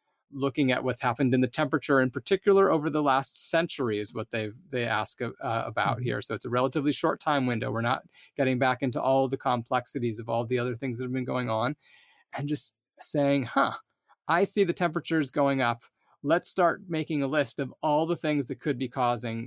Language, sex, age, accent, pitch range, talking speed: English, male, 30-49, American, 120-155 Hz, 215 wpm